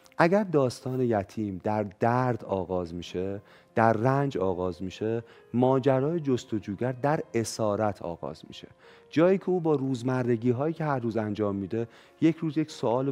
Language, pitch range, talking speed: Persian, 105-140 Hz, 145 wpm